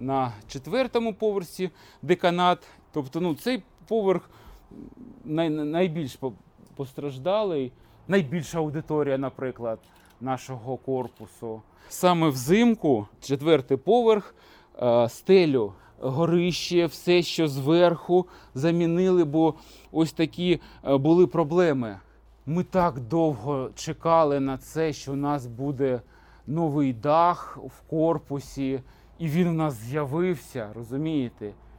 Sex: male